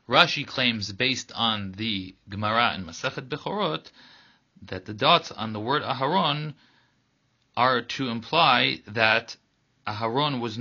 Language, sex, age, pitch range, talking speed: English, male, 30-49, 110-135 Hz, 125 wpm